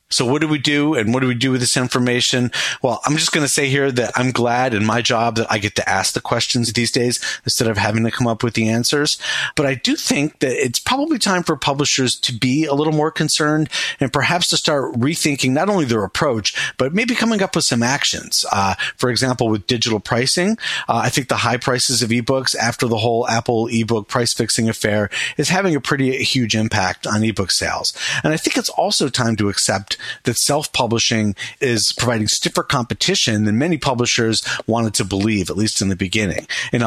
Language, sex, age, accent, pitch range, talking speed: English, male, 40-59, American, 110-145 Hz, 220 wpm